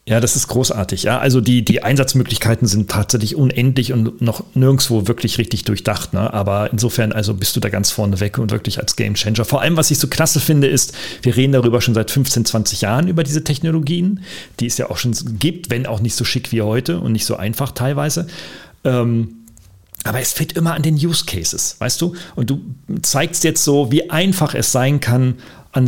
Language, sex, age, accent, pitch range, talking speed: German, male, 40-59, German, 110-140 Hz, 215 wpm